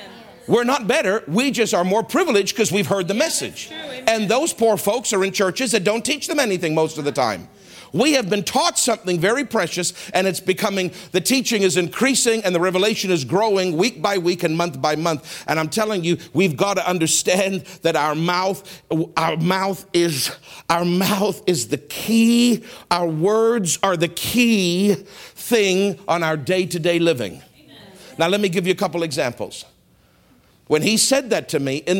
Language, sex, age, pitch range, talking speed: English, male, 50-69, 150-195 Hz, 185 wpm